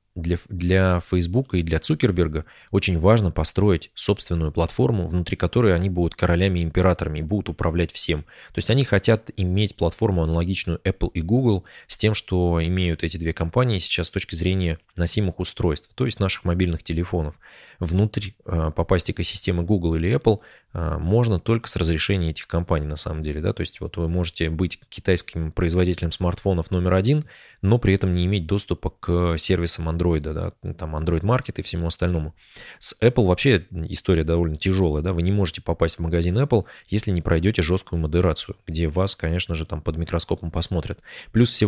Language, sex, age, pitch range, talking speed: Russian, male, 20-39, 85-100 Hz, 170 wpm